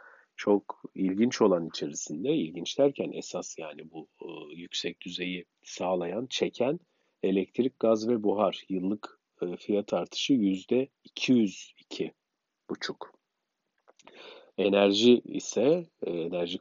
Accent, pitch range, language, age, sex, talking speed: native, 90-115 Hz, Turkish, 50-69, male, 85 wpm